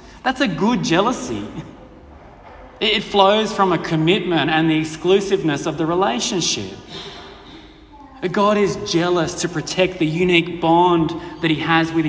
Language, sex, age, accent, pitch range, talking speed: English, male, 30-49, Australian, 135-180 Hz, 135 wpm